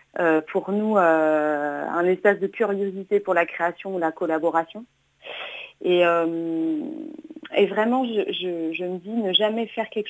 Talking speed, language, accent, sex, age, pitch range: 160 wpm, French, French, female, 30-49, 175-225 Hz